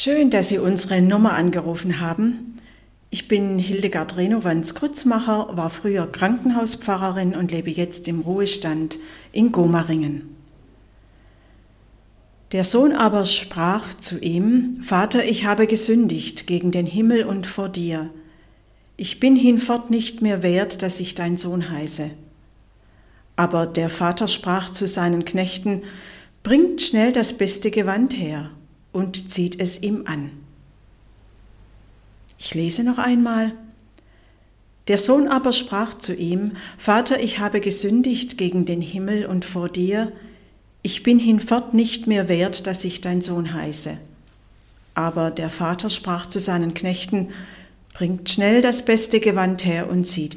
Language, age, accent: German, 50-69, German